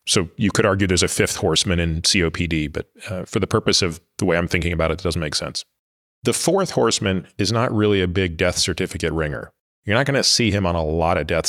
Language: English